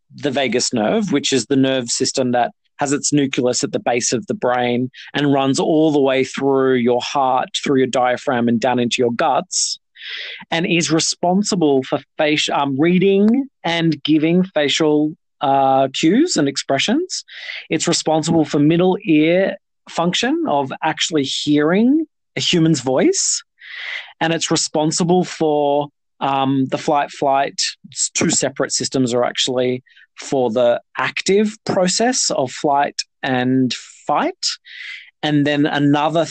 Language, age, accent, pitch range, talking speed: English, 20-39, Australian, 135-180 Hz, 135 wpm